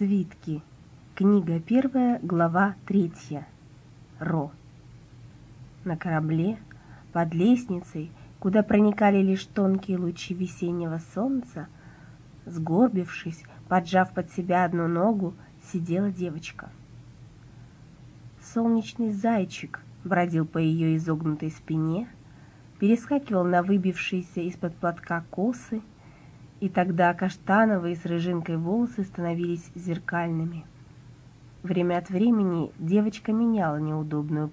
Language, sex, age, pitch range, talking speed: Russian, female, 20-39, 155-200 Hz, 90 wpm